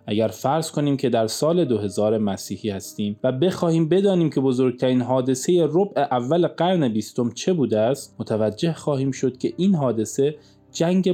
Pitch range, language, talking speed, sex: 115-160 Hz, Persian, 155 wpm, male